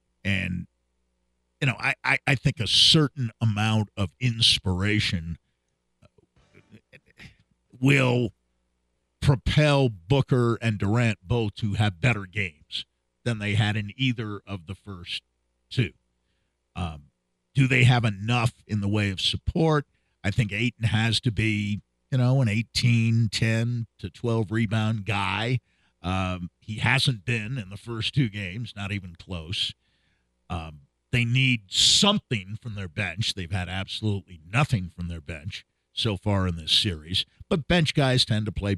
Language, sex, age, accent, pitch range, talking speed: English, male, 50-69, American, 90-125 Hz, 145 wpm